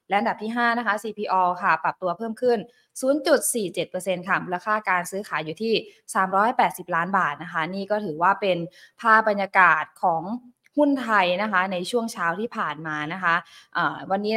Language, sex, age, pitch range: Thai, female, 20-39, 190-245 Hz